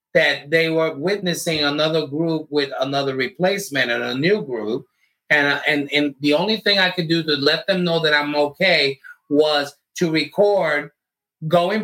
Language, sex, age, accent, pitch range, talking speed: English, male, 30-49, American, 135-165 Hz, 170 wpm